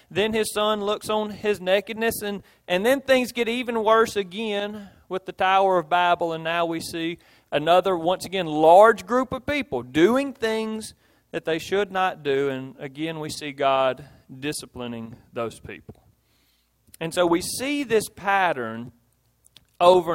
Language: English